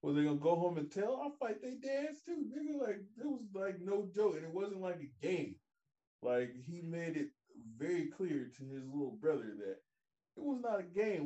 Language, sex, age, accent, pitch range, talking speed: English, male, 20-39, American, 140-190 Hz, 220 wpm